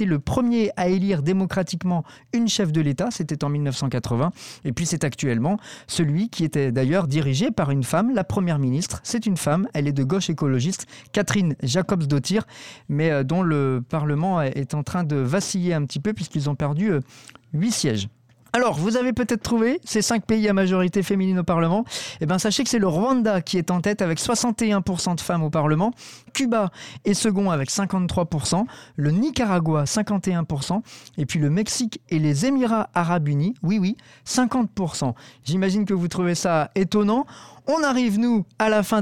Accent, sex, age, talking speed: French, male, 40-59, 180 wpm